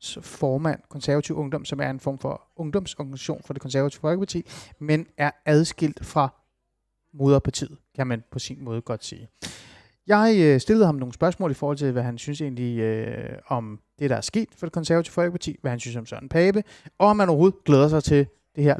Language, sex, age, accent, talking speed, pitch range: Danish, male, 30-49, native, 200 wpm, 135-175 Hz